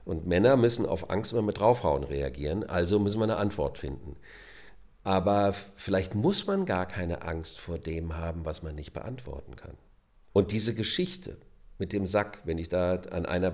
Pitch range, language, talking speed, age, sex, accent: 85-115 Hz, German, 180 wpm, 50-69, male, German